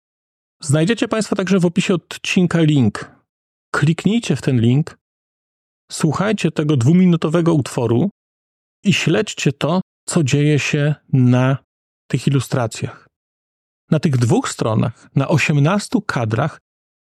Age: 40-59